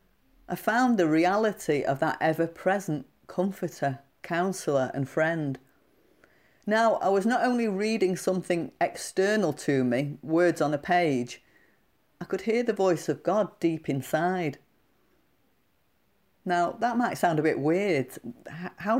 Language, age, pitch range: English, 40-59, 150-190 Hz